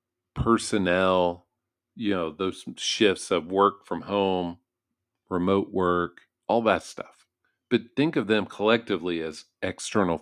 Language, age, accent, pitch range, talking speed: English, 50-69, American, 90-115 Hz, 125 wpm